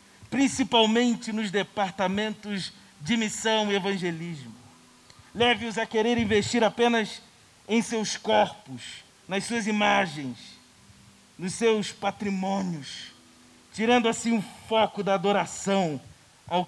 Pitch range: 185-230 Hz